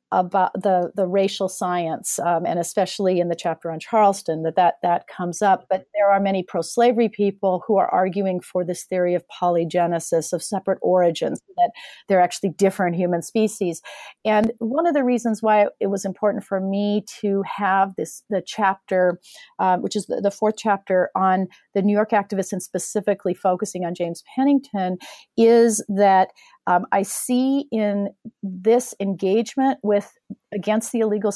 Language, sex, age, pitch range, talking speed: English, female, 40-59, 180-215 Hz, 170 wpm